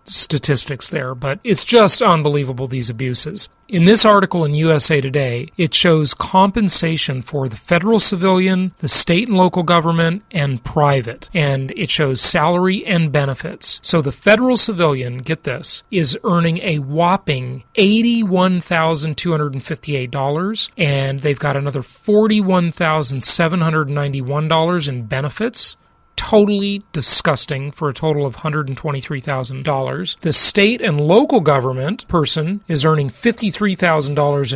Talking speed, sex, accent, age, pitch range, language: 120 wpm, male, American, 40-59, 140-185 Hz, English